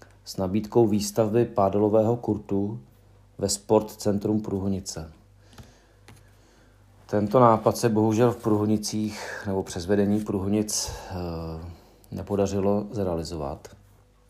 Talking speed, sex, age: 85 wpm, male, 40-59